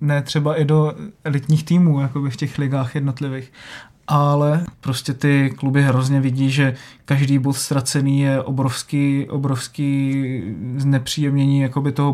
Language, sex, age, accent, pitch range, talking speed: Czech, male, 20-39, native, 135-150 Hz, 130 wpm